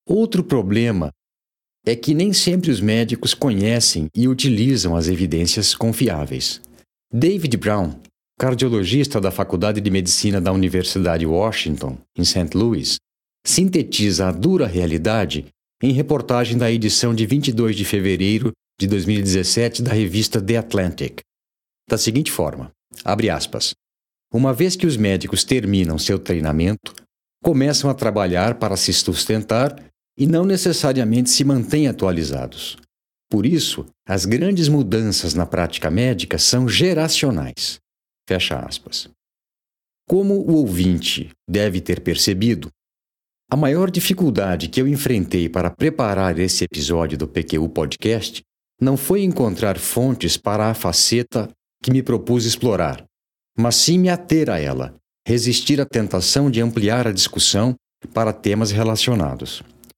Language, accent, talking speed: Portuguese, Brazilian, 130 wpm